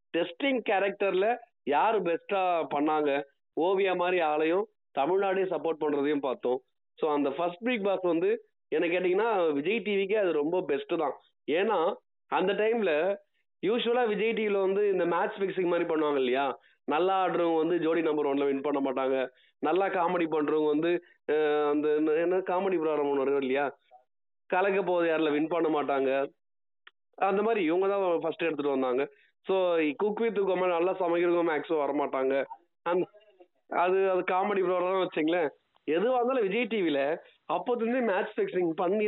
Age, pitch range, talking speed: 20-39, 155-215 Hz, 130 wpm